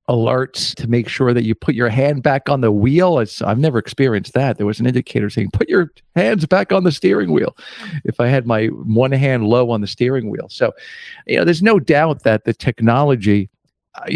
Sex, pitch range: male, 110-135 Hz